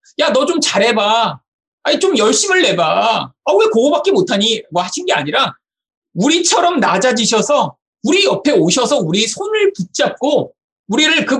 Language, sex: Korean, male